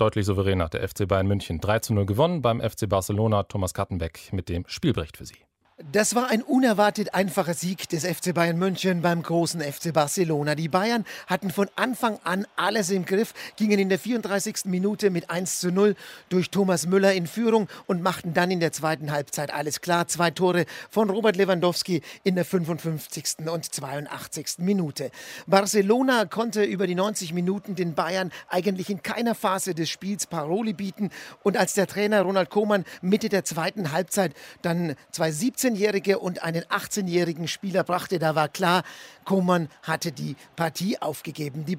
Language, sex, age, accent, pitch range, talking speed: German, male, 50-69, German, 160-200 Hz, 170 wpm